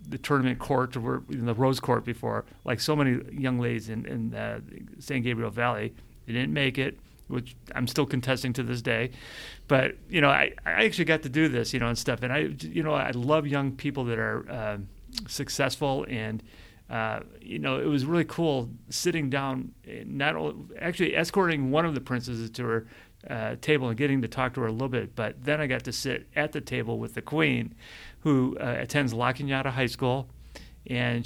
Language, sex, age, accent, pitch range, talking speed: English, male, 40-59, American, 115-140 Hz, 205 wpm